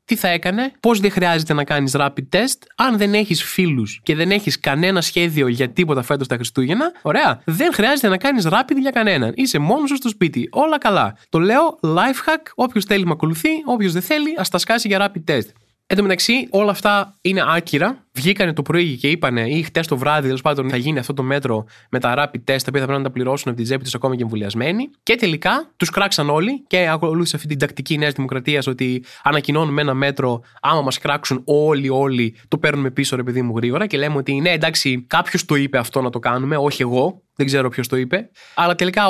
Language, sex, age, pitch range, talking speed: Greek, male, 20-39, 135-190 Hz, 220 wpm